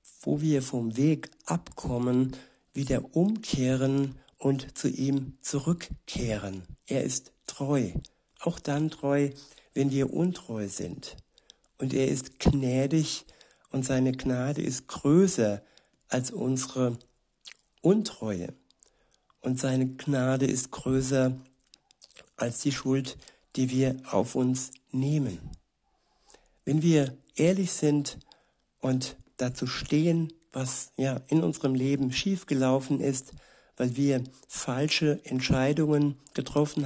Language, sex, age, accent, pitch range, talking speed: German, male, 60-79, German, 130-145 Hz, 105 wpm